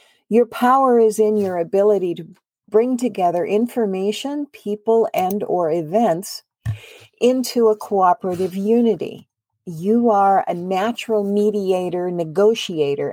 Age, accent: 50-69, American